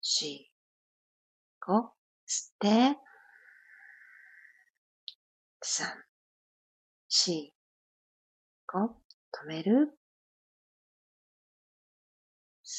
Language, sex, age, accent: Japanese, female, 40-59, American